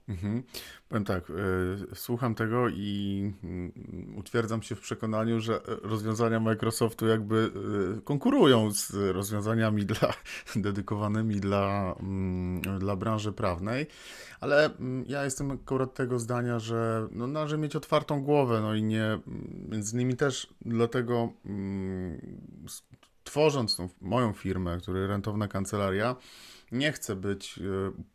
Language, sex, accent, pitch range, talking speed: Polish, male, native, 100-120 Hz, 130 wpm